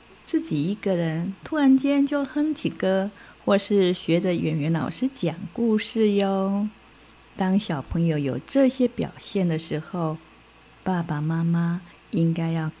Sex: female